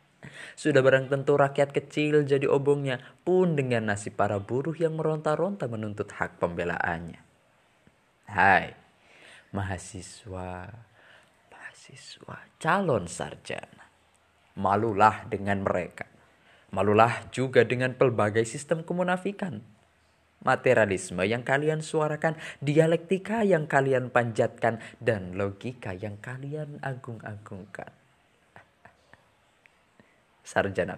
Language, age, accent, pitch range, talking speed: Indonesian, 20-39, native, 105-150 Hz, 85 wpm